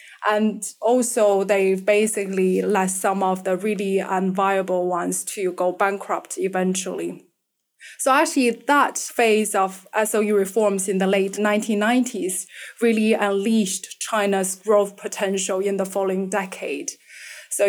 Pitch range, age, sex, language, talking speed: 190-220 Hz, 20-39, female, English, 120 wpm